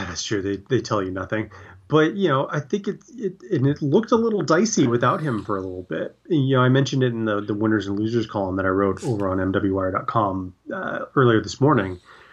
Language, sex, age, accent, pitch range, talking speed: English, male, 30-49, American, 105-130 Hz, 240 wpm